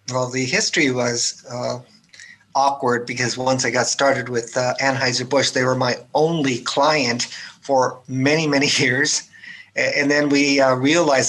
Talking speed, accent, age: 150 wpm, American, 50-69